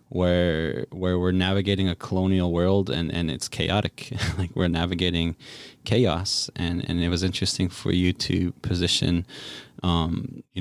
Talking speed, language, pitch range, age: 145 wpm, English, 90-105 Hz, 20-39